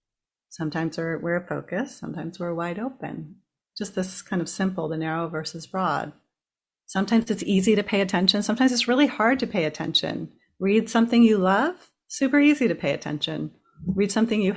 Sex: female